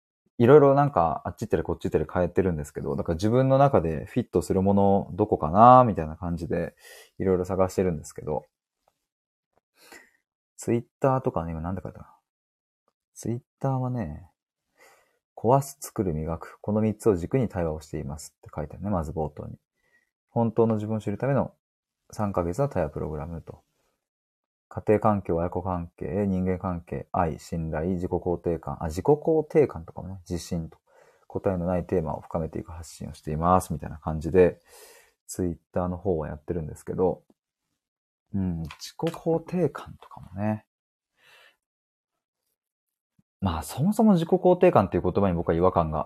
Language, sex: Japanese, male